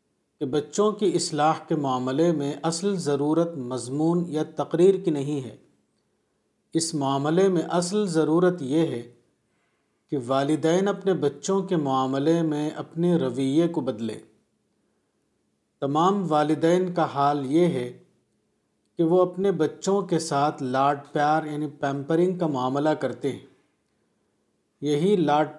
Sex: male